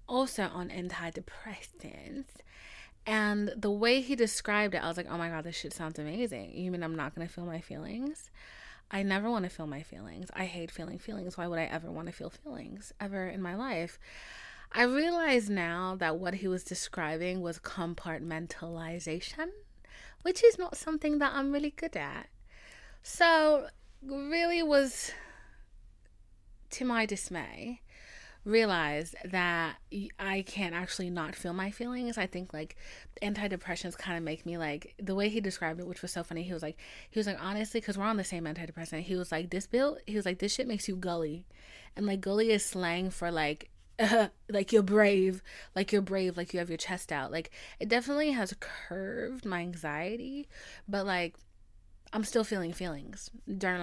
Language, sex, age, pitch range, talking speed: English, female, 20-39, 170-225 Hz, 180 wpm